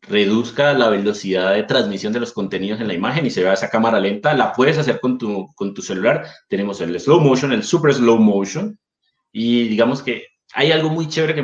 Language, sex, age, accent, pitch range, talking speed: Spanish, male, 30-49, Colombian, 110-135 Hz, 215 wpm